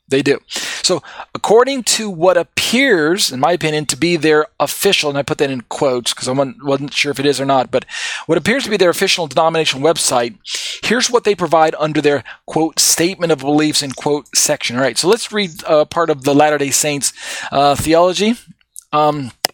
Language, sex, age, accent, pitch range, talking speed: English, male, 40-59, American, 140-190 Hz, 200 wpm